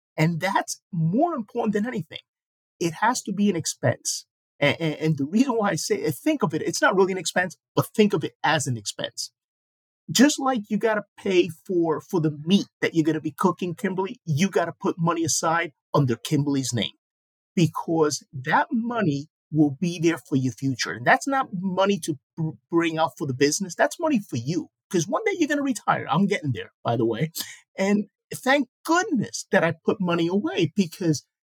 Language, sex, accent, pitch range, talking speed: English, male, American, 155-215 Hz, 205 wpm